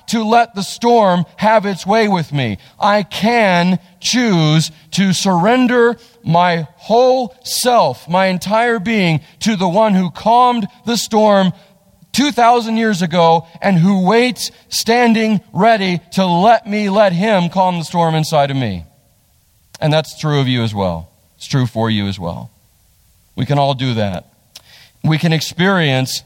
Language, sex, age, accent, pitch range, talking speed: English, male, 40-59, American, 135-190 Hz, 155 wpm